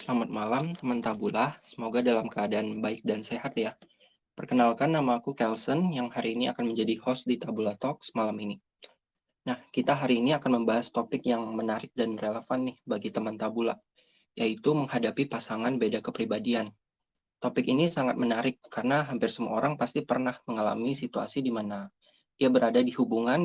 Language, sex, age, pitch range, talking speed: Indonesian, male, 20-39, 115-130 Hz, 165 wpm